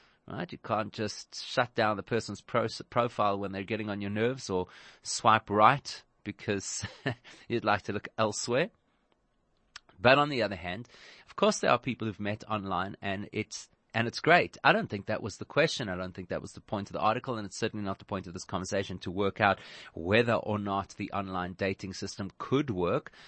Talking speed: 205 wpm